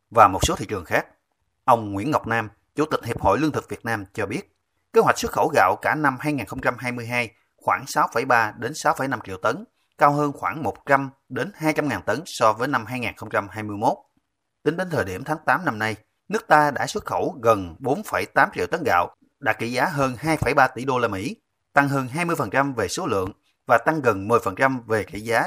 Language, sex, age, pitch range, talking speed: Vietnamese, male, 30-49, 105-140 Hz, 200 wpm